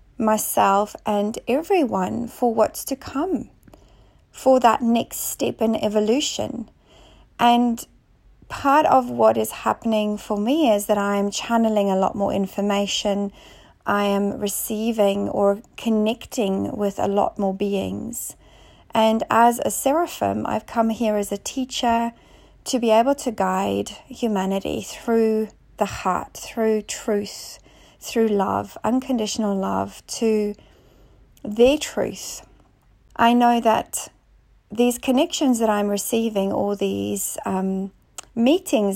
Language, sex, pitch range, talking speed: English, female, 200-240 Hz, 125 wpm